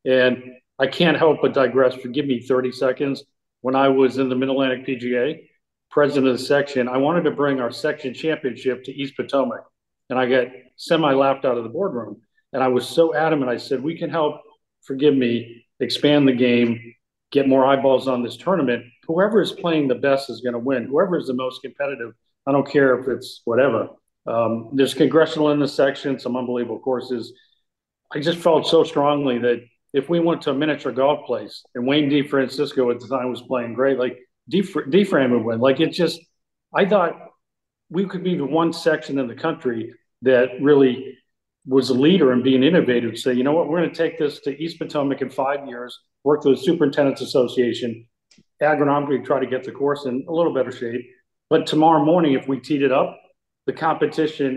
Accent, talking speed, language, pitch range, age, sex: American, 200 wpm, English, 125-150 Hz, 40-59, male